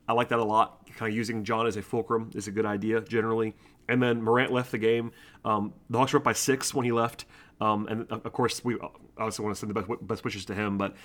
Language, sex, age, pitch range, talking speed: English, male, 30-49, 110-125 Hz, 265 wpm